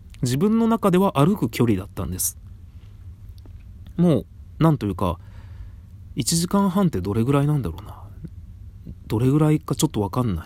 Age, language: 30-49, Japanese